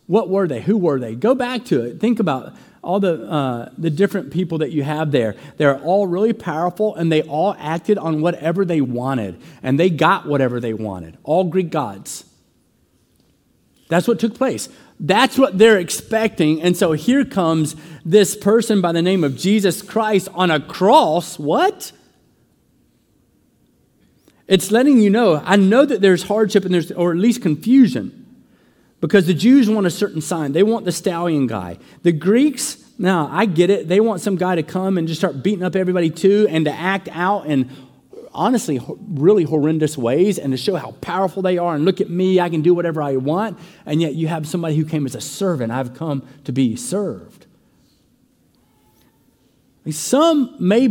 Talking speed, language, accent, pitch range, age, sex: 185 wpm, English, American, 155-210 Hz, 40-59, male